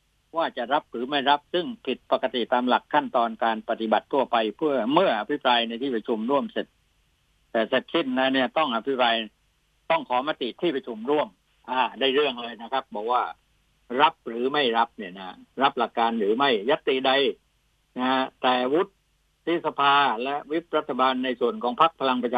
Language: Thai